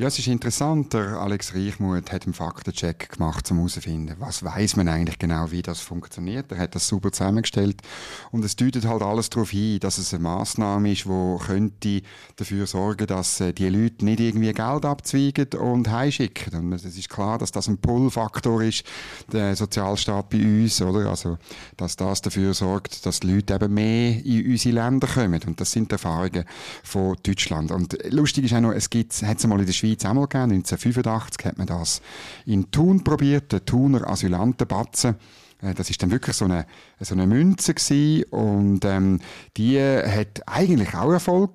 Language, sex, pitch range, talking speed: German, male, 95-120 Hz, 180 wpm